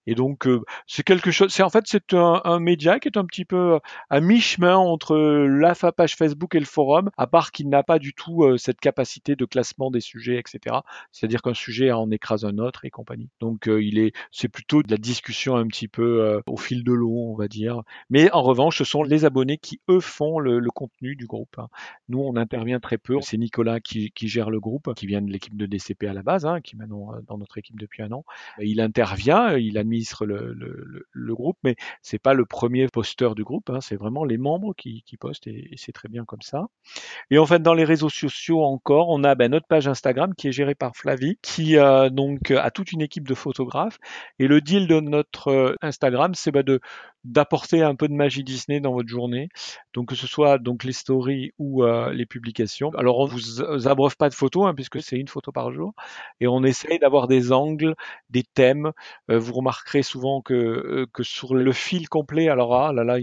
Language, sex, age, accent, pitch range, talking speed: French, male, 40-59, French, 120-155 Hz, 235 wpm